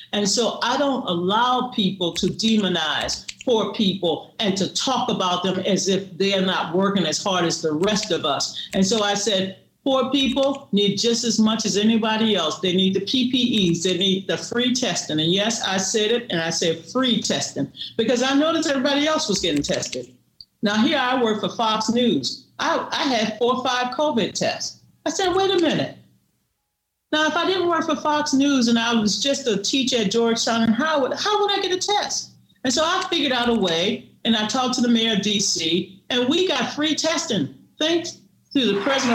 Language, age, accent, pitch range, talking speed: English, 50-69, American, 200-285 Hz, 205 wpm